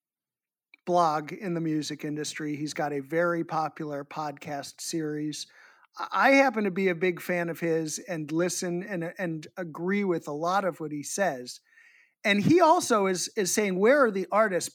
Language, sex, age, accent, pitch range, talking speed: English, male, 50-69, American, 170-250 Hz, 175 wpm